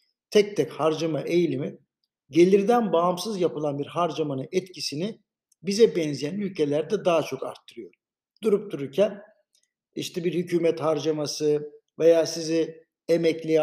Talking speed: 110 wpm